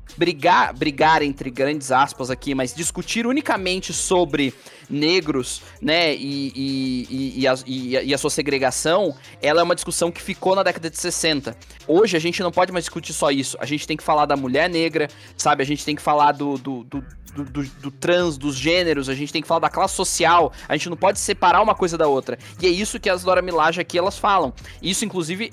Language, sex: Portuguese, male